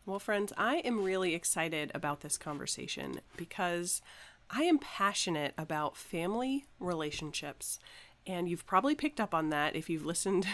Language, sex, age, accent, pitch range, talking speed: English, female, 30-49, American, 160-210 Hz, 150 wpm